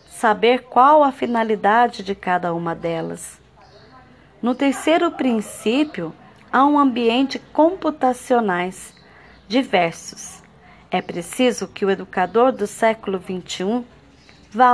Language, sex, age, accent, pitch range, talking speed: Portuguese, female, 40-59, Brazilian, 190-245 Hz, 100 wpm